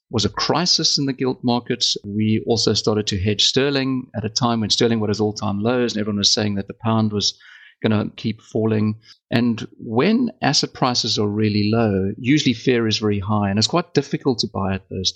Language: English